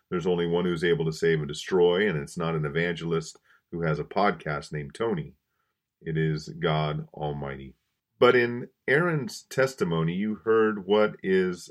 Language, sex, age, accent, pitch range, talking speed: English, male, 40-59, American, 80-115 Hz, 165 wpm